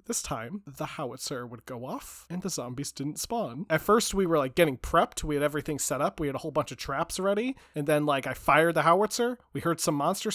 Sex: male